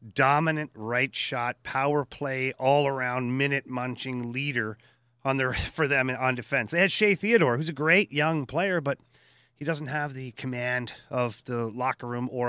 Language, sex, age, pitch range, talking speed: English, male, 40-59, 120-150 Hz, 165 wpm